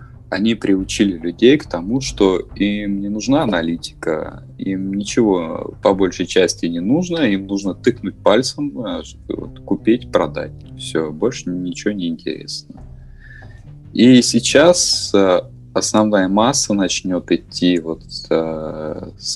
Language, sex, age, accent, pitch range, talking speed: Russian, male, 20-39, native, 85-110 Hz, 110 wpm